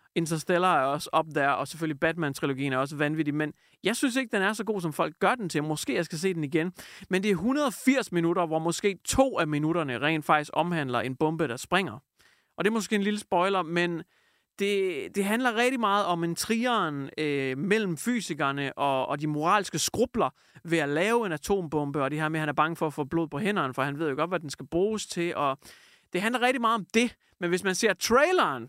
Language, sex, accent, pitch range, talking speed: English, male, Danish, 155-210 Hz, 230 wpm